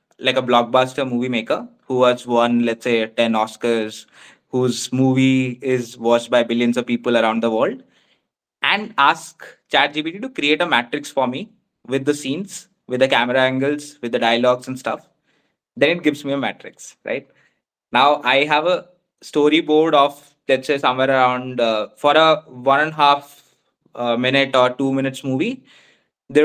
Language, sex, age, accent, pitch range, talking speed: English, male, 20-39, Indian, 120-150 Hz, 170 wpm